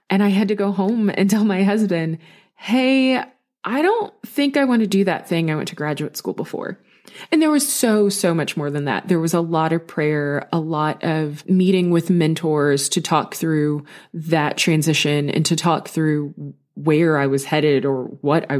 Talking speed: 205 wpm